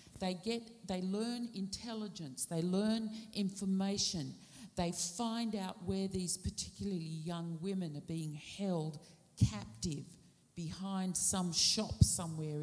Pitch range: 165-210 Hz